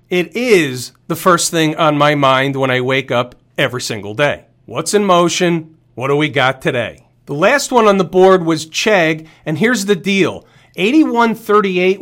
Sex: male